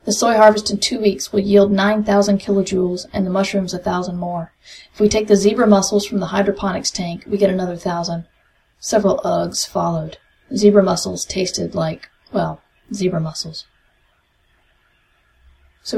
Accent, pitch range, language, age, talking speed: American, 175-210 Hz, English, 30-49, 155 wpm